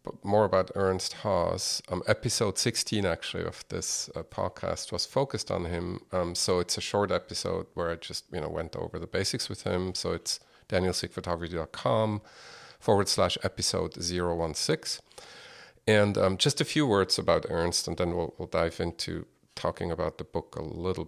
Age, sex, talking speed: 50-69, male, 170 wpm